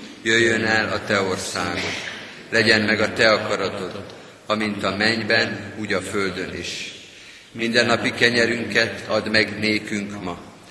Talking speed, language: 135 wpm, Hungarian